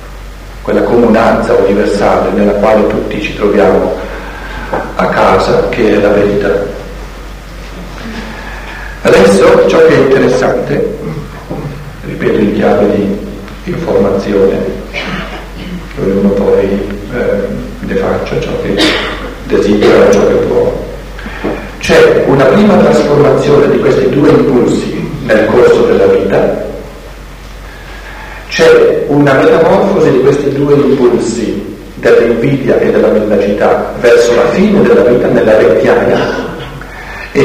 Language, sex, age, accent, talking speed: Italian, male, 50-69, native, 105 wpm